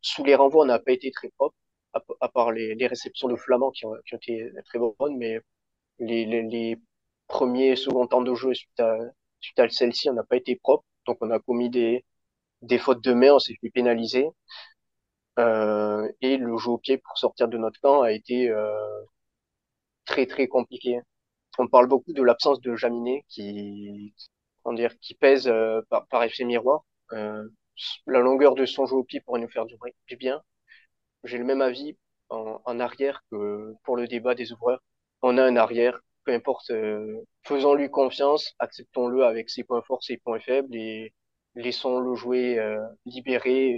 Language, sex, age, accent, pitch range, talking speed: French, male, 20-39, French, 115-130 Hz, 190 wpm